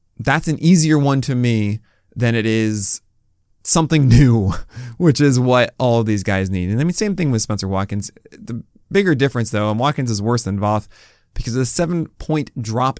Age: 20-39